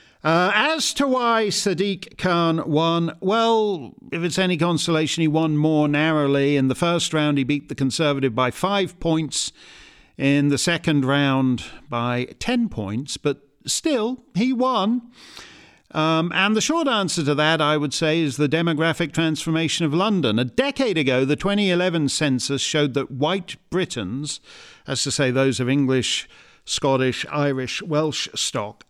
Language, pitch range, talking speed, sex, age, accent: English, 130-185 Hz, 155 wpm, male, 50-69, British